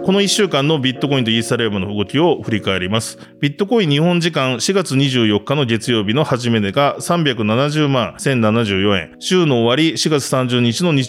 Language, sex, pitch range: Japanese, male, 120-175 Hz